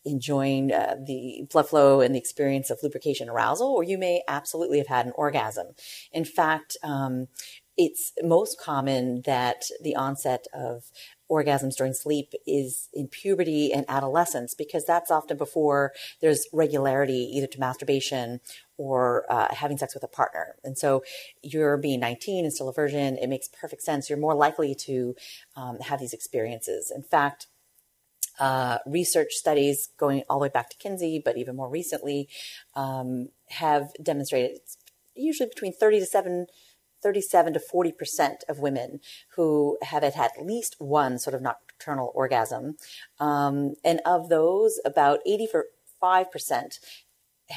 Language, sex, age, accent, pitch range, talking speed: English, female, 30-49, American, 135-165 Hz, 150 wpm